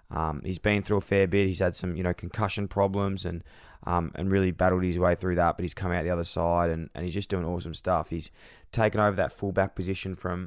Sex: male